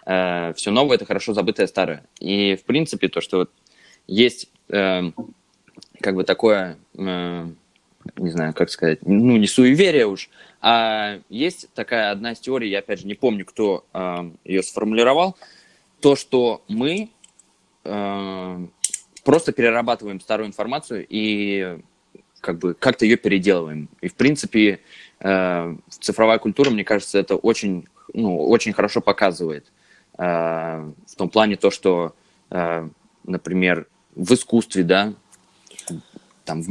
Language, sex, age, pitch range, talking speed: Russian, male, 20-39, 90-110 Hz, 120 wpm